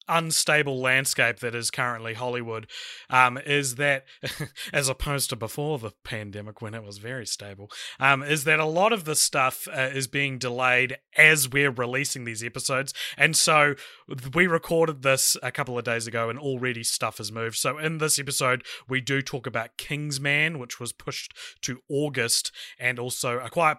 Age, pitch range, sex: 30-49, 120-145 Hz, male